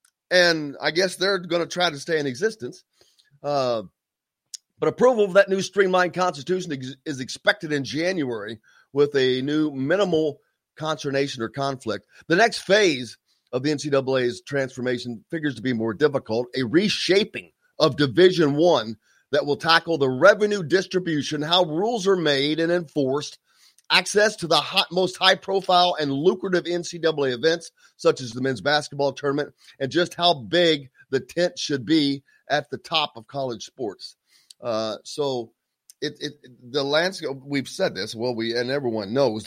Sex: male